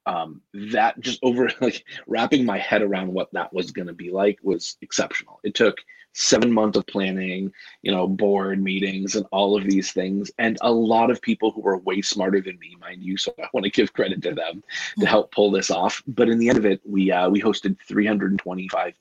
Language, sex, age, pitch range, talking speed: English, male, 30-49, 95-105 Hz, 220 wpm